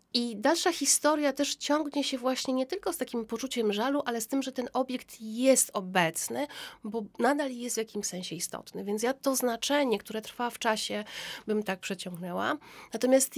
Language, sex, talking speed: Polish, female, 180 wpm